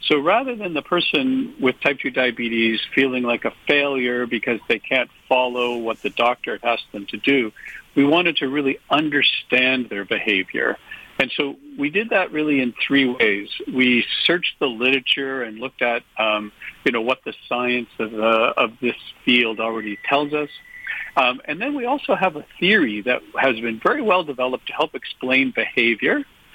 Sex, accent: male, American